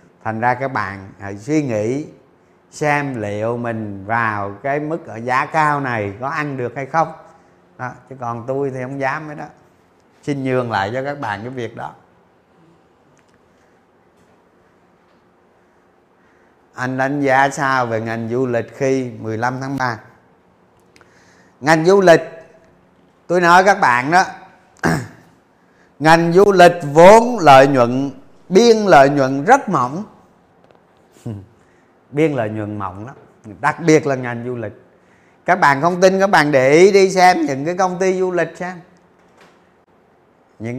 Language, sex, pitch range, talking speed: Vietnamese, male, 115-165 Hz, 145 wpm